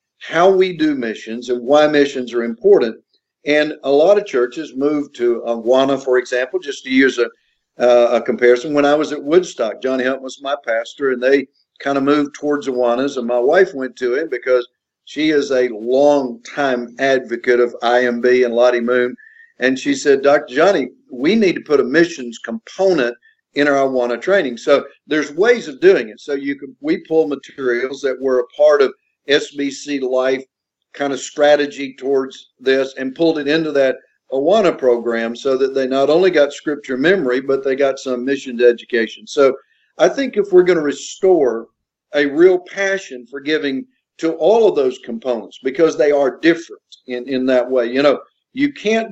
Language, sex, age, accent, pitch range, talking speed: English, male, 50-69, American, 125-175 Hz, 185 wpm